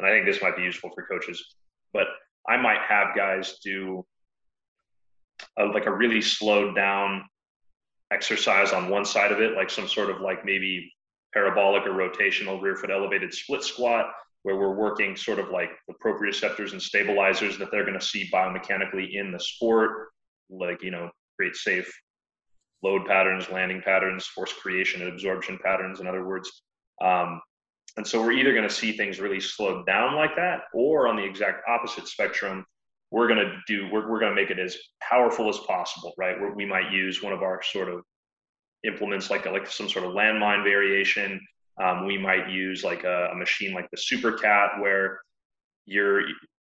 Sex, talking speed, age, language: male, 185 wpm, 30-49, English